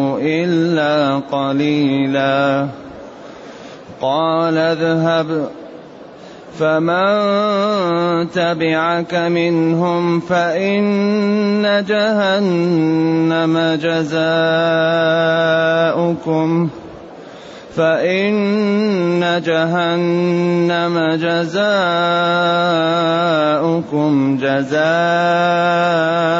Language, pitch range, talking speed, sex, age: Arabic, 155-175 Hz, 30 wpm, male, 30-49